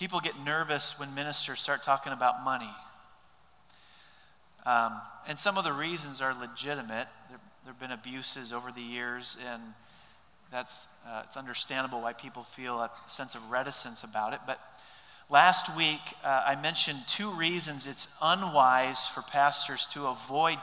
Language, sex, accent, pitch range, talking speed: English, male, American, 130-165 Hz, 150 wpm